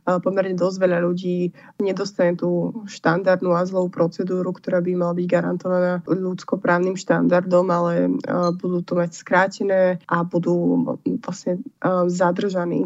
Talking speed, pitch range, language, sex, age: 120 wpm, 175-190 Hz, Slovak, female, 20-39